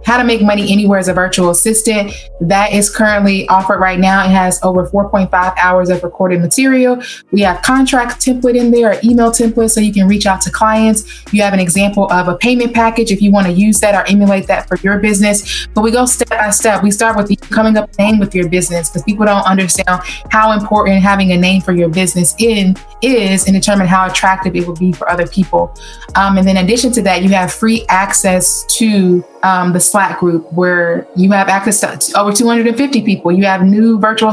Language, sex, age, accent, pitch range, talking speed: English, female, 20-39, American, 185-215 Hz, 220 wpm